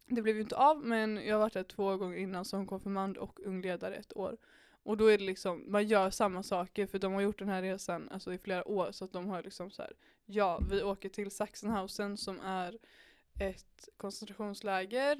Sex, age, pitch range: female, 20-39, 195-220 Hz